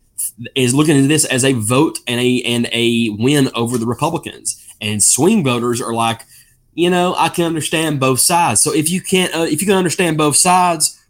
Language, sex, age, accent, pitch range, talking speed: English, male, 20-39, American, 120-165 Hz, 205 wpm